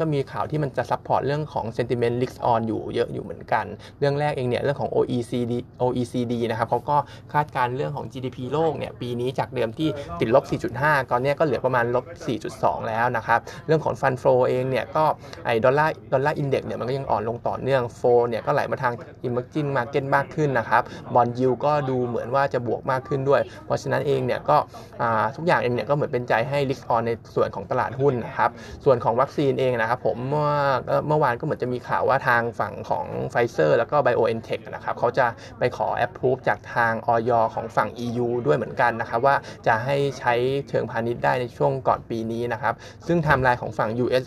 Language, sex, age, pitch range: Thai, male, 20-39, 115-140 Hz